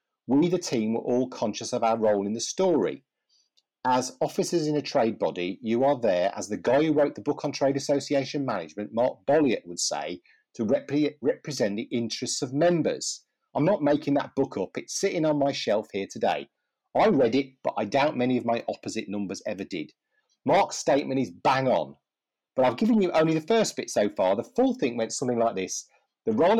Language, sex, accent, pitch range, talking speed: English, male, British, 115-160 Hz, 210 wpm